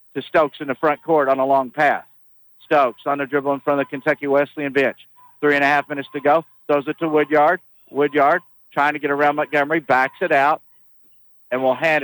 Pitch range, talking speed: 135-155 Hz, 220 wpm